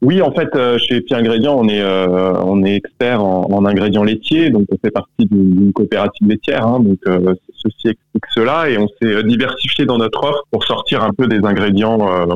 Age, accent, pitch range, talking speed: 20-39, French, 100-130 Hz, 215 wpm